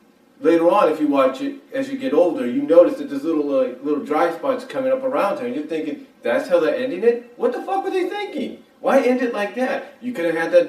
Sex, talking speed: male, 265 wpm